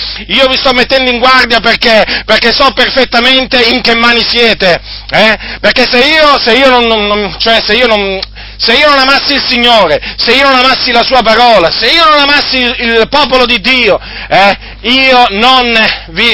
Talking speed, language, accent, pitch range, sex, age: 145 wpm, Italian, native, 190-240 Hz, male, 40-59